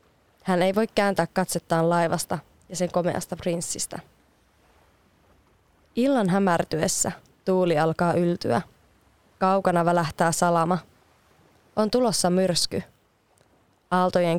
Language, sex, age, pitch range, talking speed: Finnish, female, 20-39, 170-195 Hz, 90 wpm